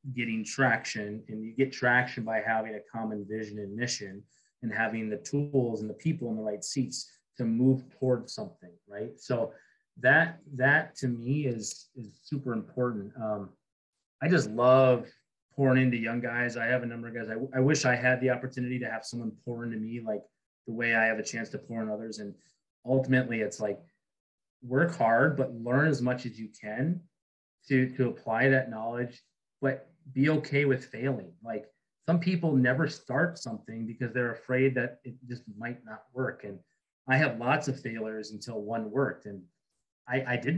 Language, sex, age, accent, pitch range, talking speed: English, male, 30-49, American, 115-140 Hz, 190 wpm